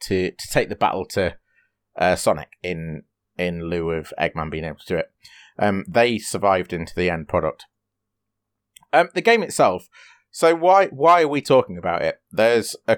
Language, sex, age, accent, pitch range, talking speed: English, male, 30-49, British, 90-110 Hz, 180 wpm